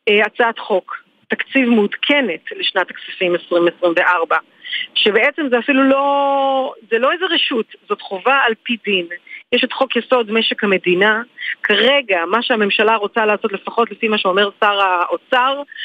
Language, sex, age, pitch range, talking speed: Hebrew, female, 40-59, 215-305 Hz, 140 wpm